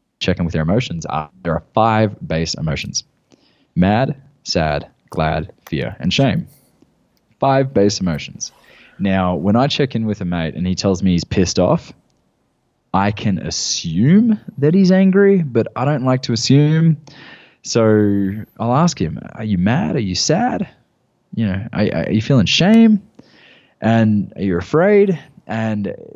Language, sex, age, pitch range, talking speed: English, male, 20-39, 105-145 Hz, 155 wpm